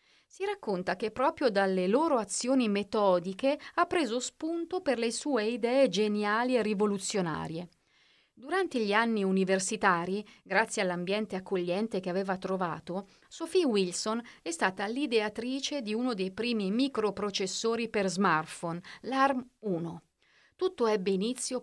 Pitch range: 190-250 Hz